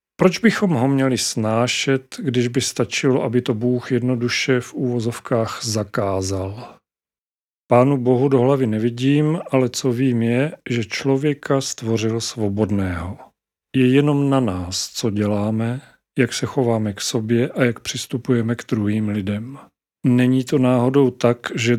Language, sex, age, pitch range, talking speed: Czech, male, 40-59, 115-135 Hz, 140 wpm